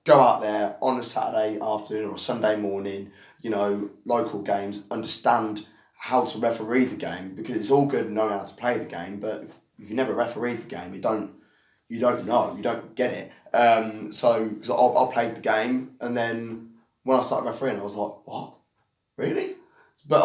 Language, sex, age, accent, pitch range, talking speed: English, male, 20-39, British, 100-130 Hz, 195 wpm